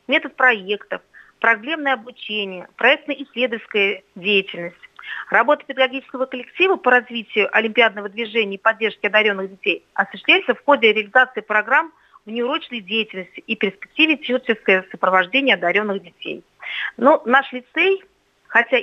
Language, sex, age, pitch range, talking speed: Russian, female, 40-59, 210-275 Hz, 110 wpm